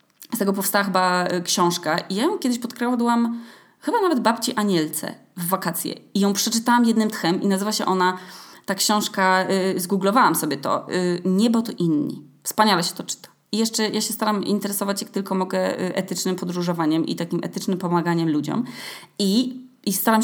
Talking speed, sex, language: 165 wpm, female, Polish